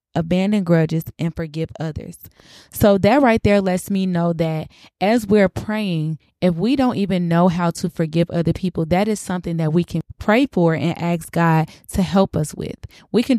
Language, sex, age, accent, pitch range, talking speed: English, female, 20-39, American, 170-195 Hz, 195 wpm